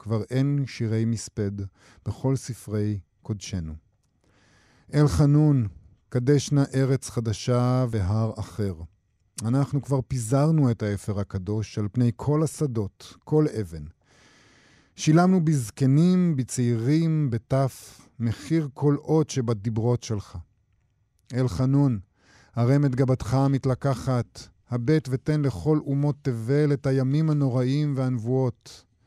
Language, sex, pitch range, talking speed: Hebrew, male, 105-140 Hz, 100 wpm